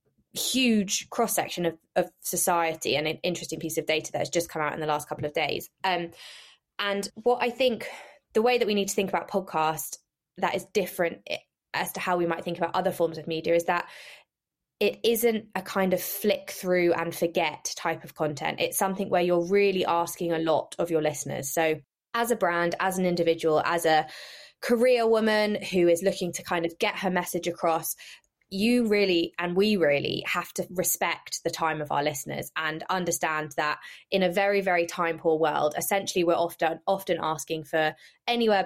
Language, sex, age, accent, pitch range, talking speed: English, female, 20-39, British, 160-195 Hz, 195 wpm